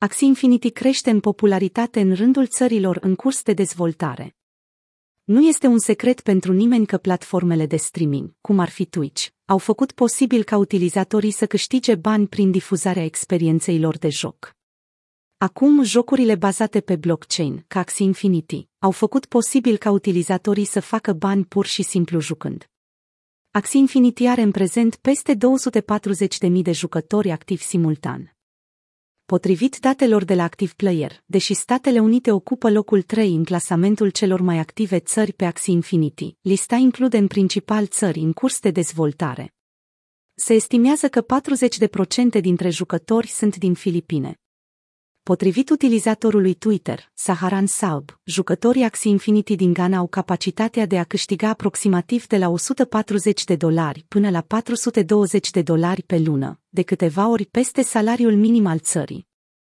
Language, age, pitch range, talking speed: Romanian, 30-49, 175-225 Hz, 145 wpm